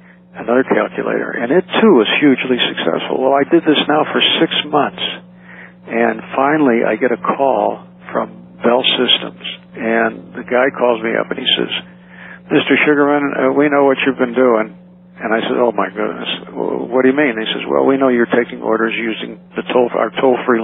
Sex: male